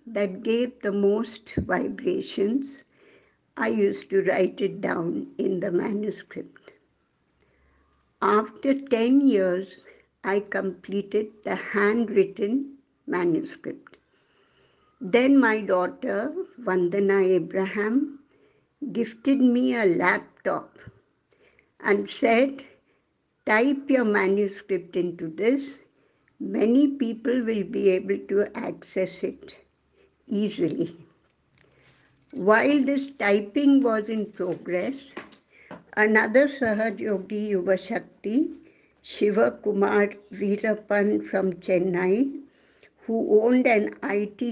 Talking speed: 90 wpm